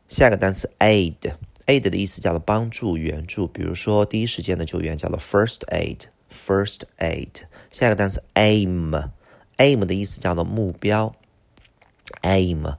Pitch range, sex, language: 85-110 Hz, male, Chinese